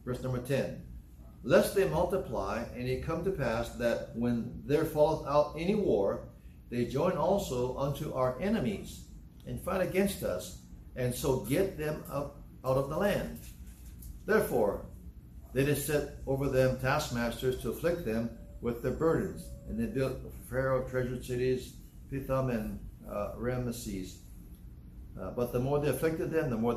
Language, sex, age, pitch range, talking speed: English, male, 60-79, 95-140 Hz, 155 wpm